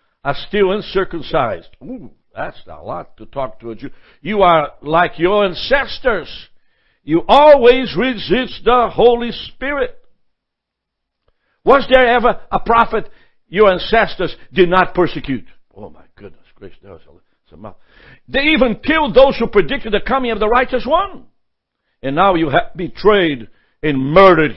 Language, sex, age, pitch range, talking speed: English, male, 60-79, 170-245 Hz, 135 wpm